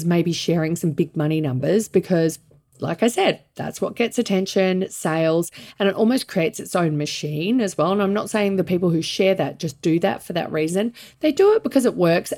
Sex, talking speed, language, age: female, 220 wpm, English, 40-59